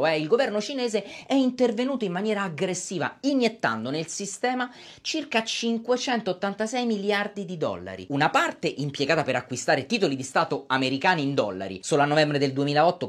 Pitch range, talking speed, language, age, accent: 145-230 Hz, 145 wpm, Italian, 30-49, native